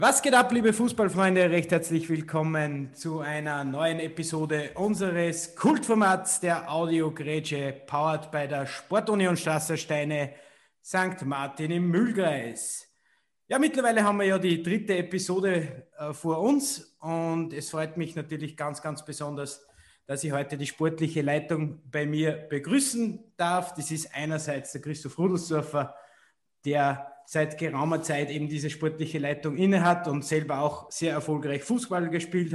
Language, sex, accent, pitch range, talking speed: German, male, Austrian, 145-175 Hz, 140 wpm